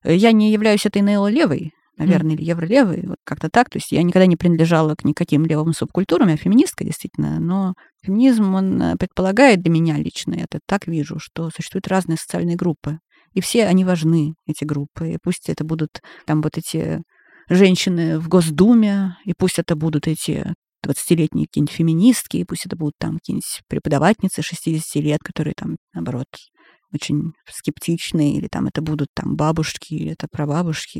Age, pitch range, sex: 20-39, 160-200 Hz, female